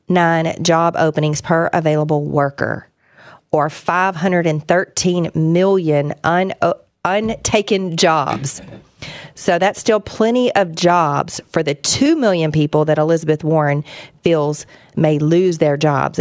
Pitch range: 150-180 Hz